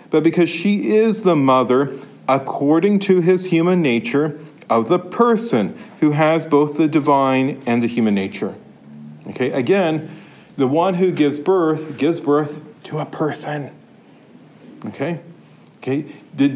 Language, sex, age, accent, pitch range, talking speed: English, male, 40-59, American, 140-180 Hz, 140 wpm